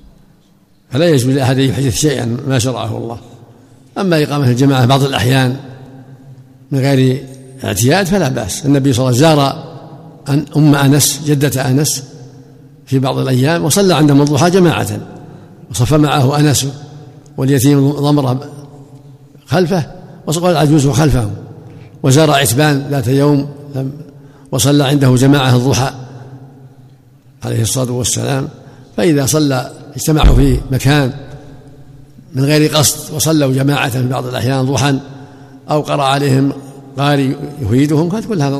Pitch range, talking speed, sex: 130-145 Hz, 120 wpm, male